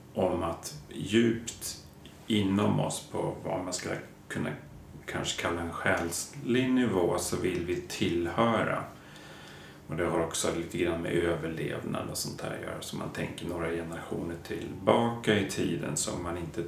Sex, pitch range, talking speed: male, 80-105 Hz, 155 wpm